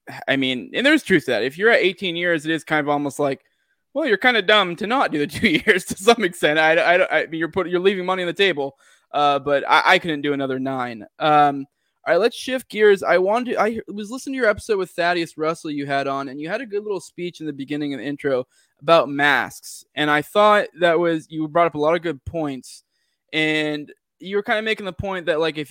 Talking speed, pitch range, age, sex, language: 260 wpm, 140-175 Hz, 20-39, male, English